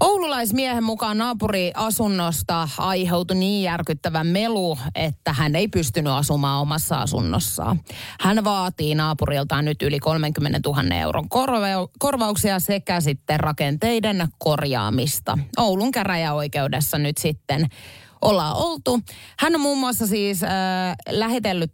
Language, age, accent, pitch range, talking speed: Finnish, 30-49, native, 140-190 Hz, 110 wpm